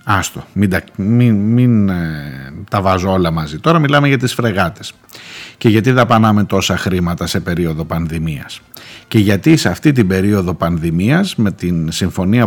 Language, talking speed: Greek, 140 wpm